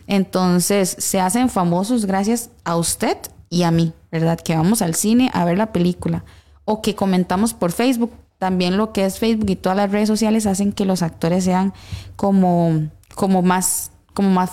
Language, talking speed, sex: Spanish, 175 wpm, female